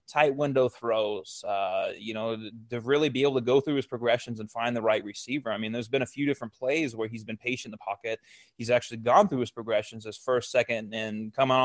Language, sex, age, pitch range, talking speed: English, male, 20-39, 110-130 Hz, 240 wpm